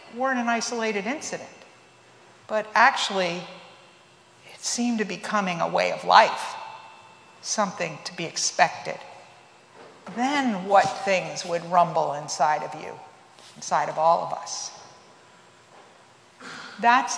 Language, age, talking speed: English, 50-69, 115 wpm